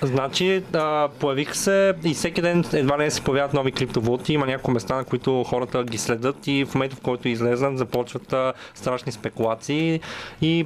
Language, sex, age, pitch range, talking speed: Bulgarian, male, 30-49, 130-150 Hz, 170 wpm